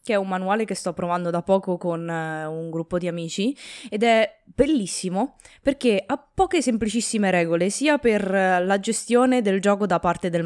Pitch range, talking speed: 165-215 Hz, 180 wpm